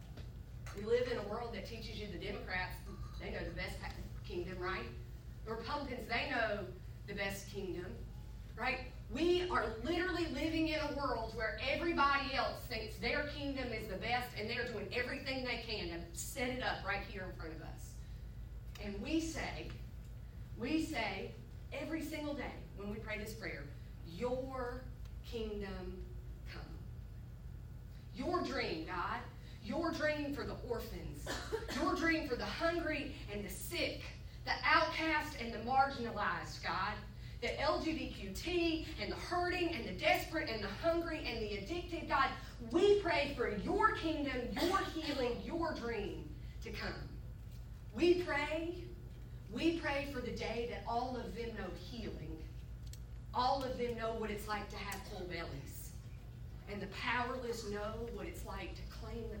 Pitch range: 235-325 Hz